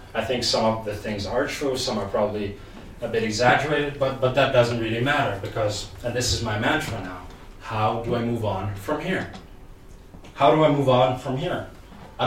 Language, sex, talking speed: Danish, male, 205 wpm